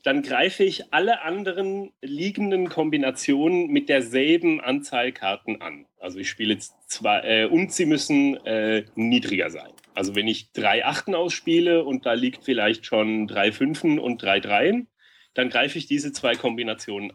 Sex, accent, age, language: male, German, 30-49, German